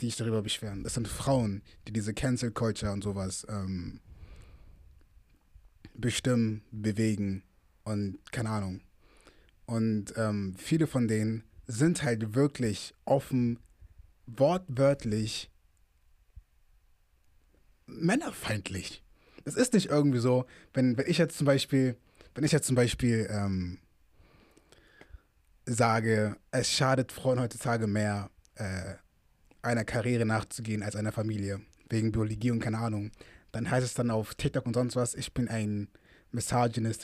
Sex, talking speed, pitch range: male, 125 wpm, 100-130 Hz